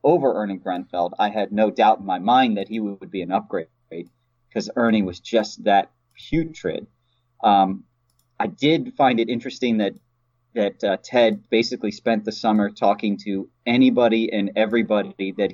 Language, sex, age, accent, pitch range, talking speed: English, male, 30-49, American, 100-125 Hz, 165 wpm